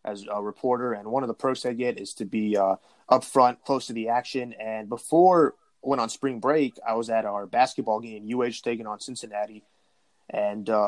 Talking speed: 215 wpm